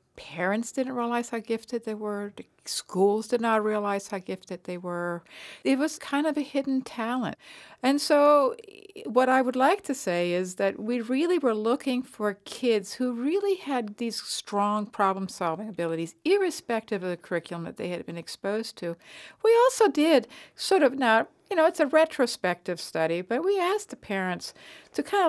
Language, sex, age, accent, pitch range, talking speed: English, female, 60-79, American, 210-325 Hz, 175 wpm